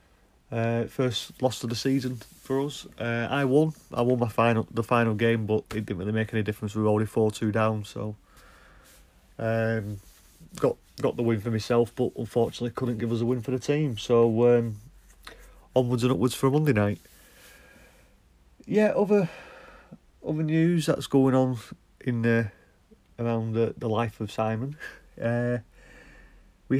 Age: 30-49